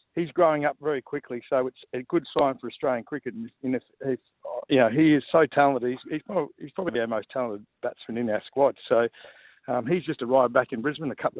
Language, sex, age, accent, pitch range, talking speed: English, male, 50-69, Australian, 125-150 Hz, 225 wpm